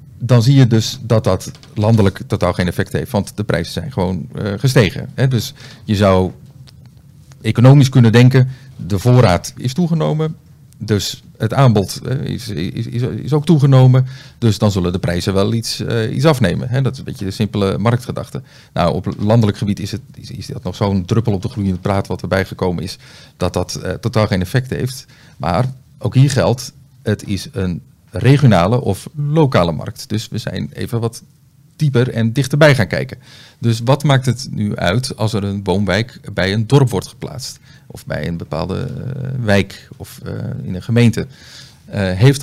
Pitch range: 100-135 Hz